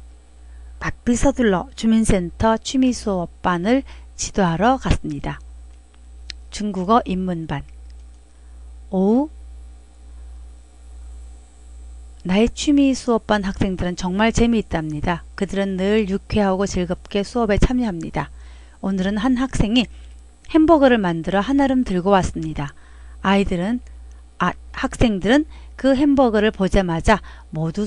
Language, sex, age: Korean, female, 40-59